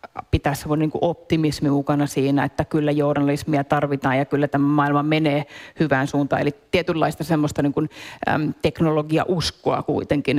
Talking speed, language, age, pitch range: 125 wpm, English, 30-49, 150-175 Hz